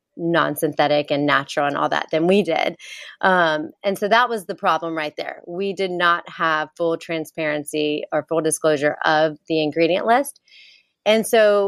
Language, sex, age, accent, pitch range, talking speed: English, female, 30-49, American, 160-200 Hz, 175 wpm